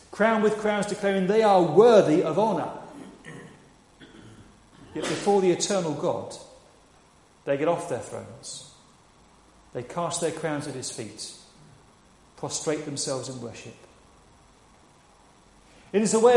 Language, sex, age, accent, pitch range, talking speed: English, male, 40-59, British, 150-210 Hz, 125 wpm